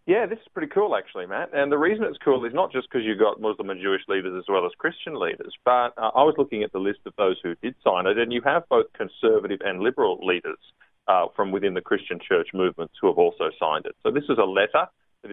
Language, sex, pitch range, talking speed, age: English, male, 105-150 Hz, 260 wpm, 30-49